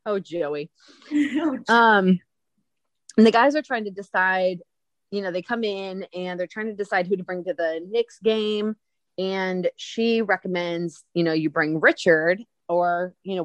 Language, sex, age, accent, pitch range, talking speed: English, female, 30-49, American, 170-210 Hz, 170 wpm